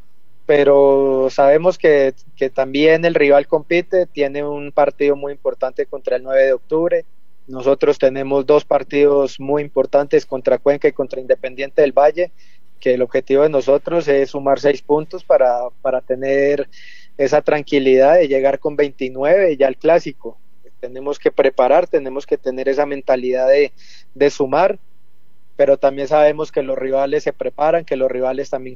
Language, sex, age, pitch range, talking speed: Spanish, male, 30-49, 130-150 Hz, 155 wpm